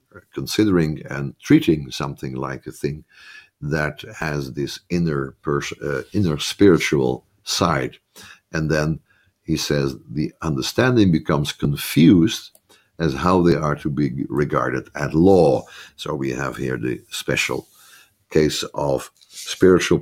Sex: male